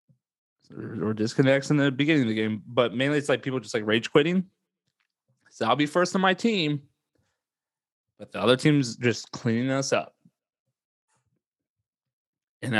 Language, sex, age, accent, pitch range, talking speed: English, male, 30-49, American, 125-200 Hz, 155 wpm